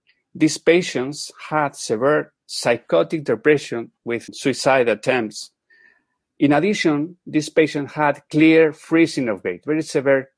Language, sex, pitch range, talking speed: English, male, 120-160 Hz, 115 wpm